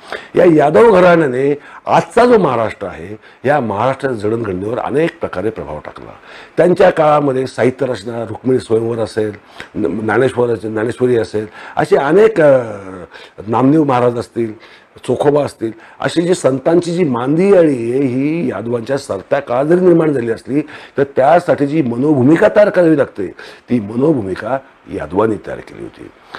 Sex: male